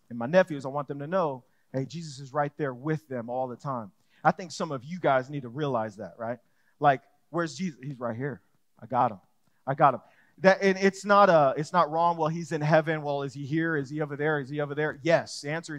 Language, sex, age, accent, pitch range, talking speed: English, male, 30-49, American, 145-185 Hz, 260 wpm